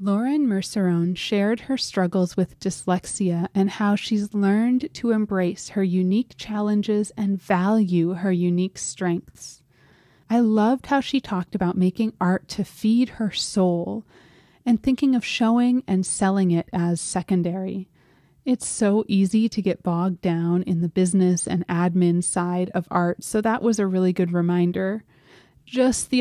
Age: 30-49